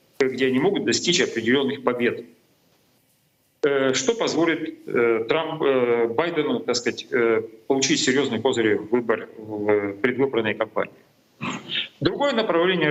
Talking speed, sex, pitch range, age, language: 100 wpm, male, 125-180 Hz, 40-59, Russian